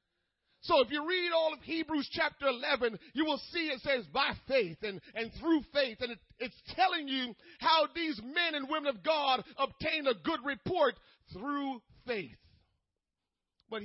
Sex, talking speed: male, 165 wpm